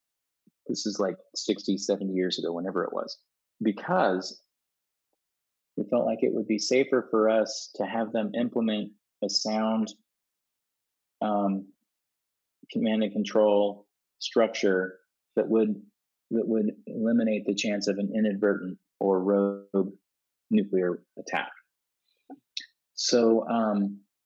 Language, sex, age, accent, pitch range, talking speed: English, male, 30-49, American, 95-115 Hz, 115 wpm